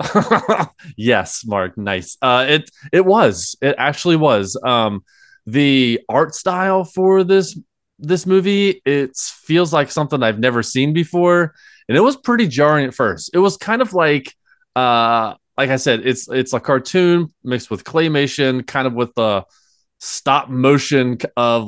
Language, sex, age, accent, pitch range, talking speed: English, male, 20-39, American, 105-150 Hz, 155 wpm